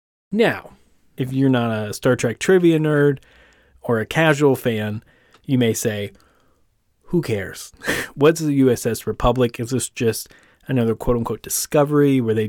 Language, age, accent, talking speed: English, 30-49, American, 145 wpm